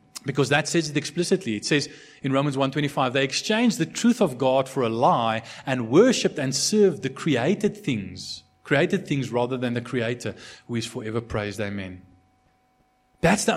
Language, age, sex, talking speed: English, 30-49, male, 175 wpm